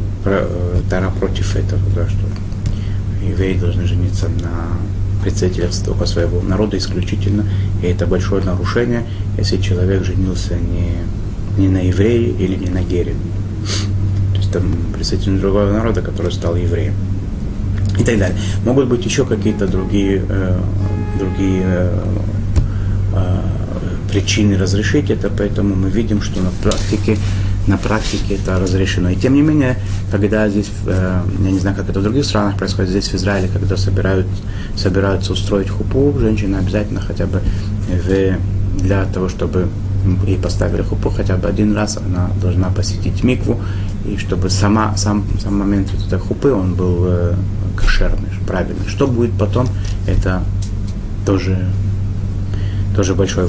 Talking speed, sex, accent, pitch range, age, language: 135 wpm, male, native, 95-100 Hz, 30-49, Russian